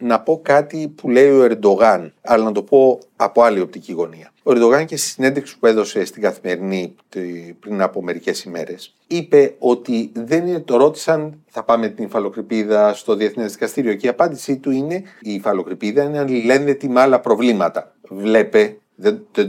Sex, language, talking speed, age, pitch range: male, Greek, 170 wpm, 40-59, 110-175 Hz